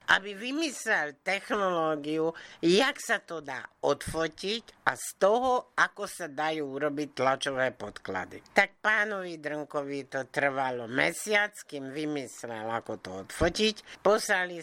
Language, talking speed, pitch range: Slovak, 120 wpm, 135-180 Hz